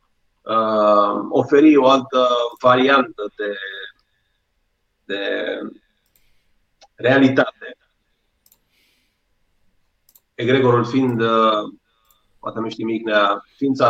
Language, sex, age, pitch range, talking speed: Romanian, male, 30-49, 120-160 Hz, 60 wpm